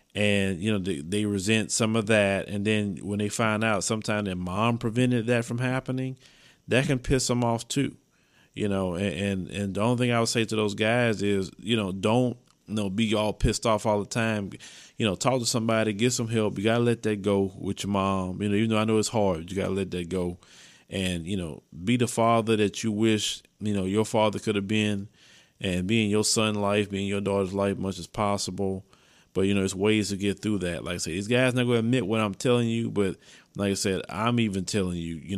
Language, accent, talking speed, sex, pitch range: English, American, 245 wpm, male, 95-115 Hz